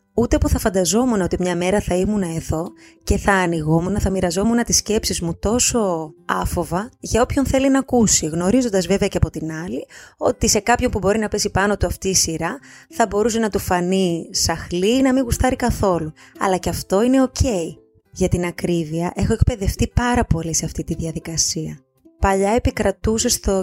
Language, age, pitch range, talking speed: Greek, 20-39, 165-215 Hz, 185 wpm